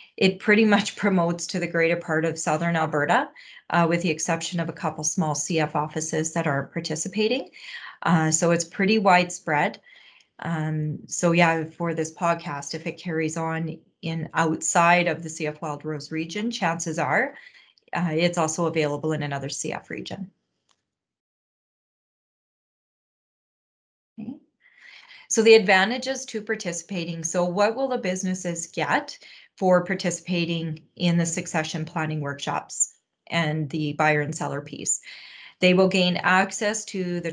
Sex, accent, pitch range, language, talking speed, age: female, American, 160-185 Hz, English, 140 wpm, 30-49